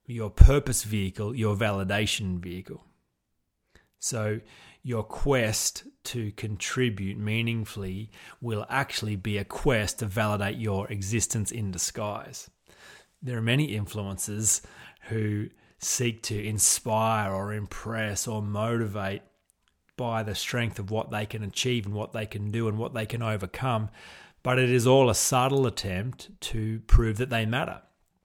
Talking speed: 140 wpm